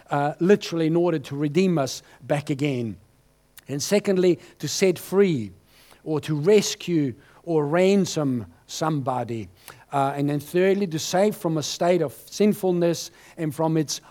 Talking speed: 145 wpm